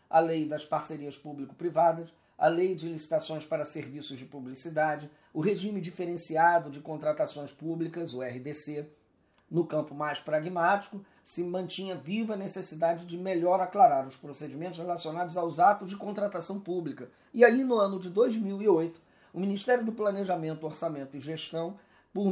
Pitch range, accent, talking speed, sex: 155-195 Hz, Brazilian, 150 wpm, male